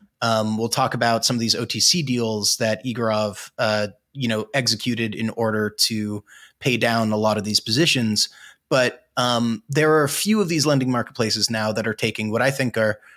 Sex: male